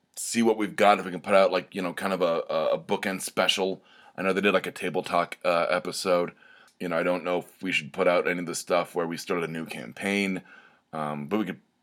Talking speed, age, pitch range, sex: 265 wpm, 30-49, 85-105 Hz, male